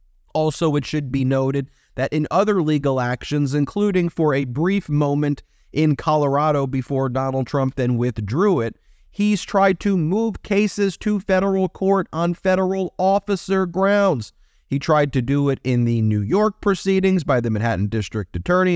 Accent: American